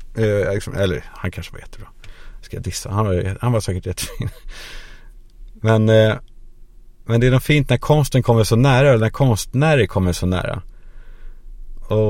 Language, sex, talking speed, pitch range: Swedish, male, 175 wpm, 95-120 Hz